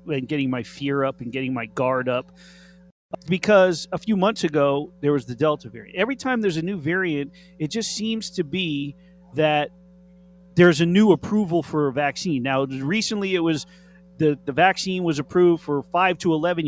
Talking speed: 185 wpm